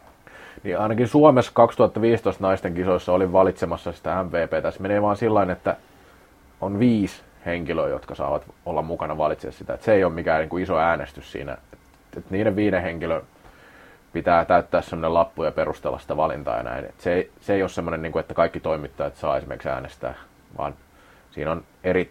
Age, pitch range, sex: 30-49, 85-110 Hz, male